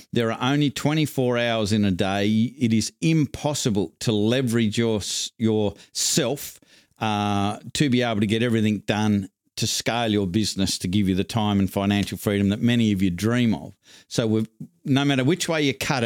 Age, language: 50-69, English